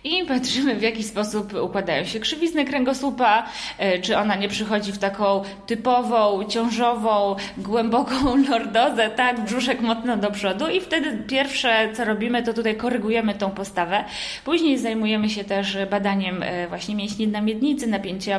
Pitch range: 200-250 Hz